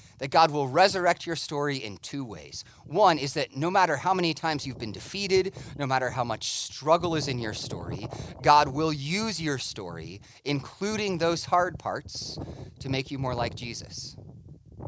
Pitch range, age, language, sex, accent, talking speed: 125-175 Hz, 30-49, English, male, American, 175 wpm